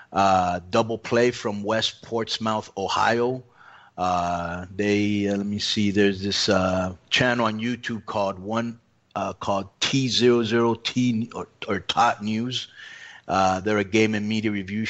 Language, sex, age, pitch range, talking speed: English, male, 30-49, 100-110 Hz, 140 wpm